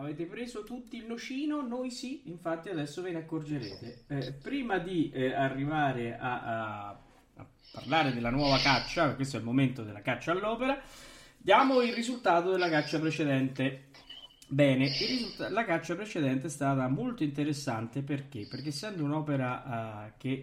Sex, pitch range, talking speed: male, 130-175 Hz, 145 wpm